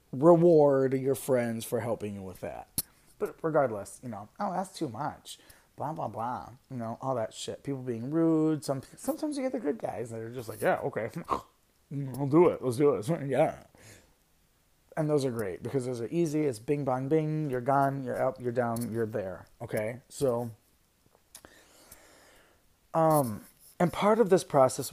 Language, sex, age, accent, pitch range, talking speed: English, male, 30-49, American, 120-170 Hz, 180 wpm